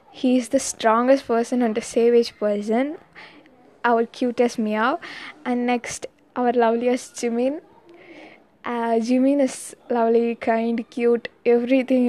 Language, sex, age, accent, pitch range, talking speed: Tamil, female, 20-39, native, 225-260 Hz, 120 wpm